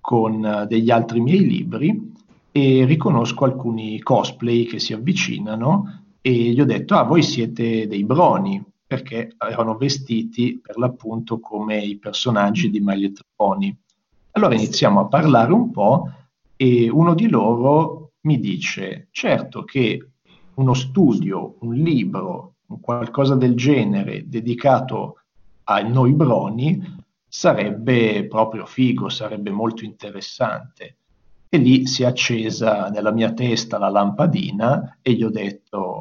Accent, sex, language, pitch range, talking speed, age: native, male, Italian, 115-145 Hz, 125 wpm, 50-69